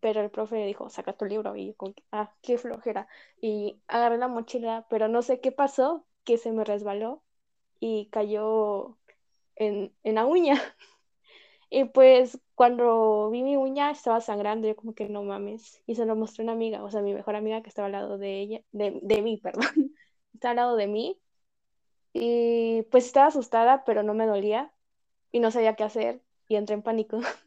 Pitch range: 205-235 Hz